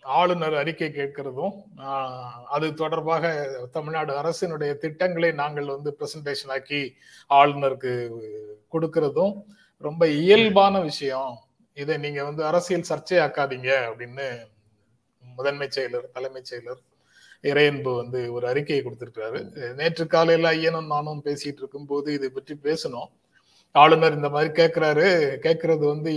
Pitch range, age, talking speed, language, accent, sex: 140-165 Hz, 30-49, 115 wpm, Tamil, native, male